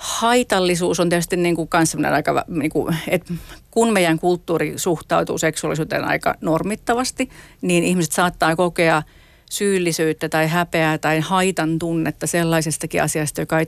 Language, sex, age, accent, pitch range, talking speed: Finnish, female, 40-59, native, 160-175 Hz, 130 wpm